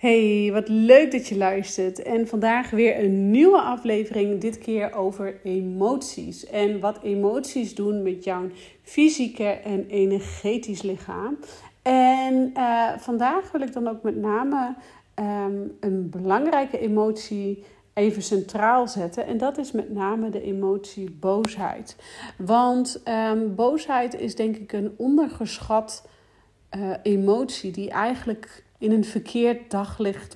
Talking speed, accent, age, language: 125 wpm, Dutch, 40-59, Dutch